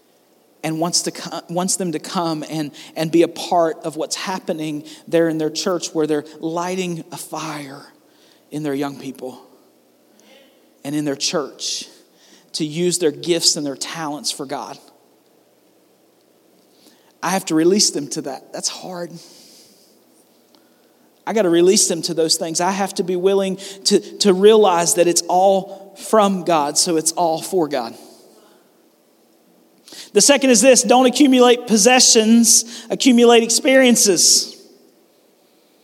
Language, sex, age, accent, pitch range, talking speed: English, male, 40-59, American, 170-215 Hz, 140 wpm